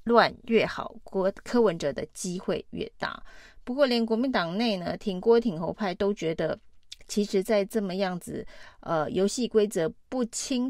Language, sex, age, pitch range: Chinese, female, 30-49, 180-225 Hz